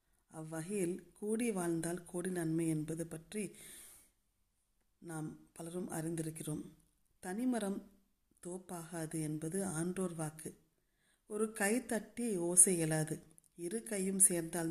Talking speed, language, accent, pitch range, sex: 95 wpm, Tamil, native, 160-190 Hz, female